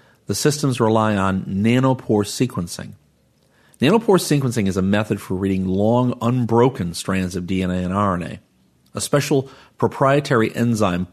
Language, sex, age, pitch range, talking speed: English, male, 40-59, 95-120 Hz, 130 wpm